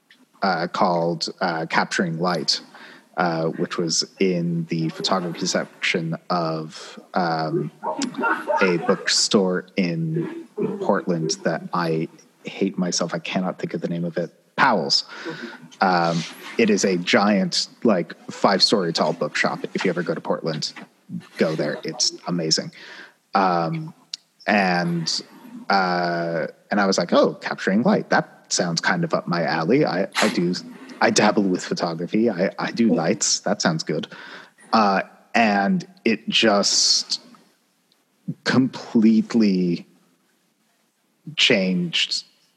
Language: English